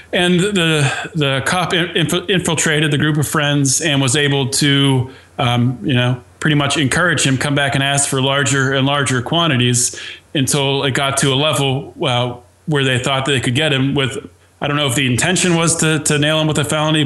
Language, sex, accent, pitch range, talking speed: English, male, American, 130-150 Hz, 205 wpm